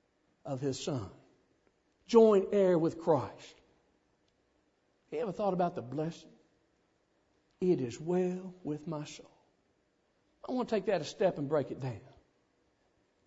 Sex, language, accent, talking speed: male, English, American, 135 wpm